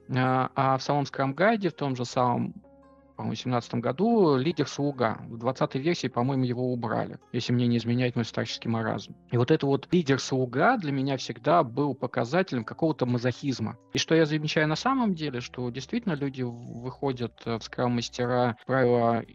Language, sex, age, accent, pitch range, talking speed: Russian, male, 20-39, native, 120-145 Hz, 160 wpm